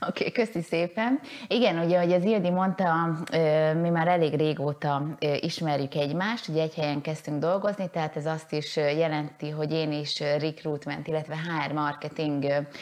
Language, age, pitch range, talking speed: Hungarian, 20-39, 150-170 Hz, 155 wpm